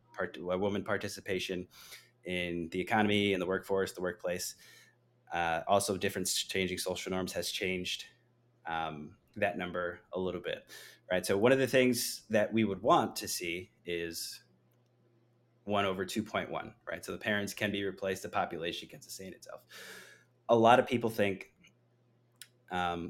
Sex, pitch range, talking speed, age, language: male, 95-120 Hz, 155 wpm, 20-39, English